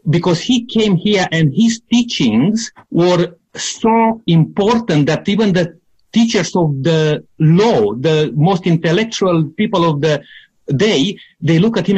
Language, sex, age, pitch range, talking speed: English, male, 50-69, 160-215 Hz, 140 wpm